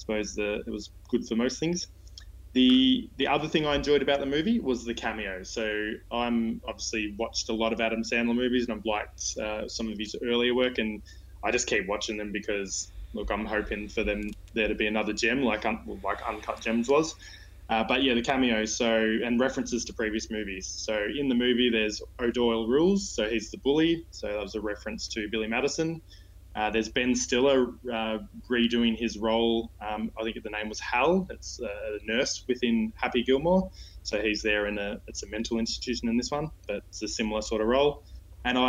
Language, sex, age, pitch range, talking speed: English, male, 20-39, 105-125 Hz, 205 wpm